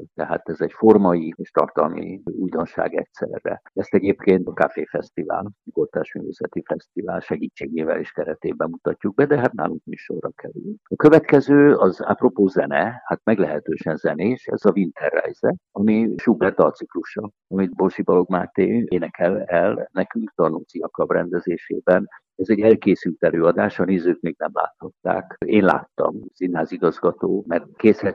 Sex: male